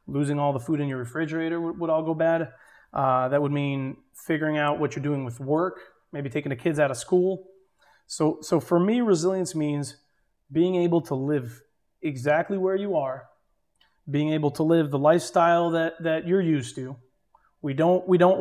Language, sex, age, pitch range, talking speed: English, male, 30-49, 140-165 Hz, 190 wpm